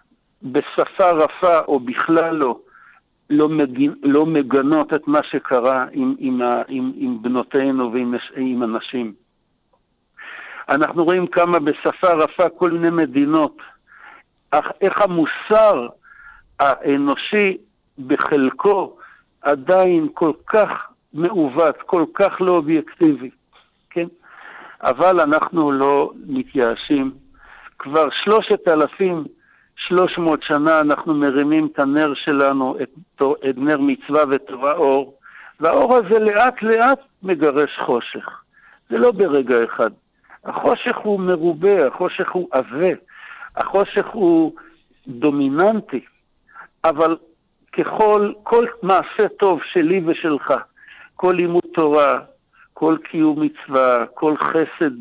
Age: 60-79